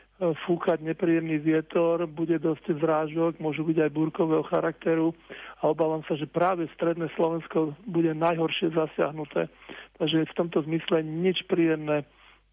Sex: male